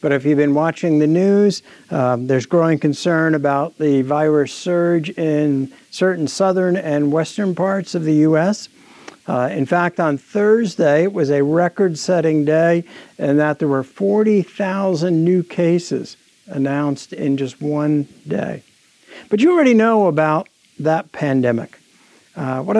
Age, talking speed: 60-79, 145 wpm